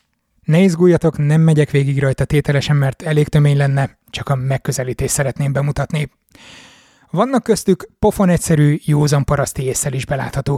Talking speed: 130 wpm